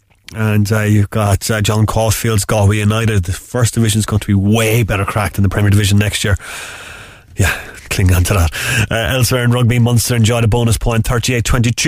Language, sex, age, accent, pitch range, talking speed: English, male, 30-49, Irish, 100-120 Hz, 195 wpm